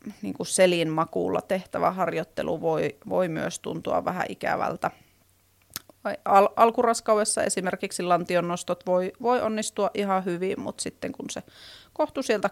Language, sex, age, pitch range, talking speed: Finnish, female, 30-49, 165-215 Hz, 120 wpm